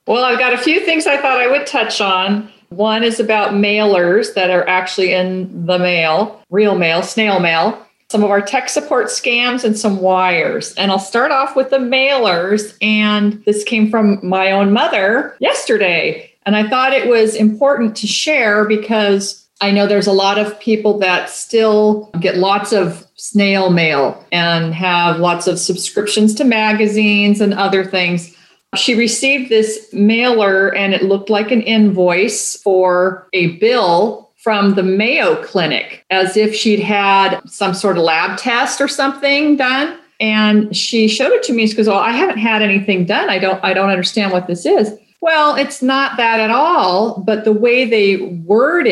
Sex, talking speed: female, 175 wpm